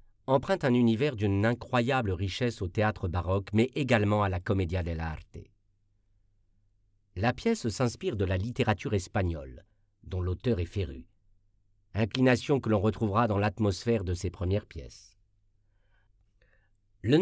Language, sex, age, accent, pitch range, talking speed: French, male, 50-69, French, 95-115 Hz, 130 wpm